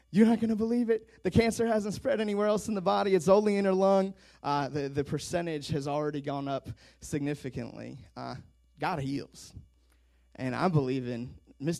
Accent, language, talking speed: American, English, 190 wpm